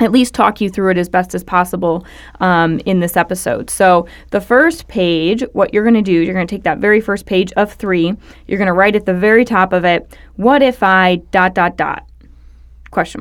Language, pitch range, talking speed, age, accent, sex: English, 175-210 Hz, 220 wpm, 20-39, American, female